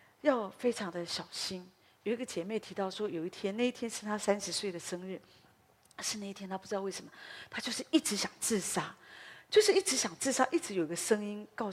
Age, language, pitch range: 40-59, Chinese, 185-235 Hz